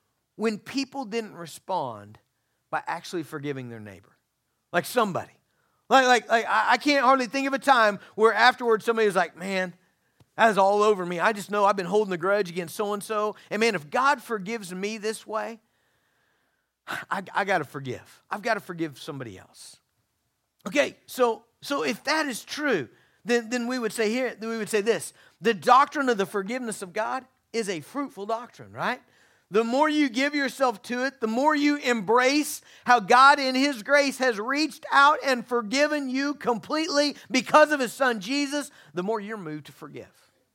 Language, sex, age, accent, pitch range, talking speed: English, male, 40-59, American, 195-265 Hz, 185 wpm